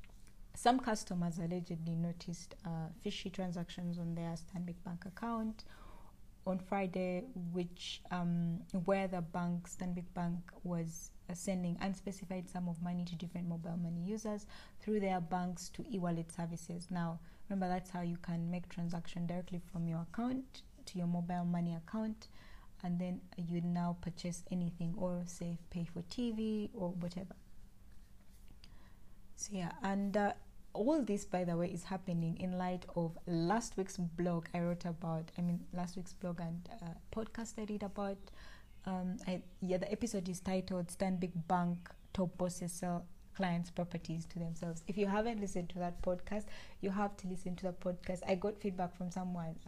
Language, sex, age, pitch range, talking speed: English, female, 20-39, 170-190 Hz, 165 wpm